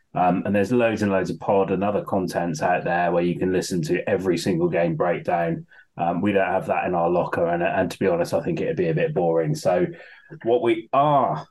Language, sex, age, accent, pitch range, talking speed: English, male, 30-49, British, 95-120 Hz, 240 wpm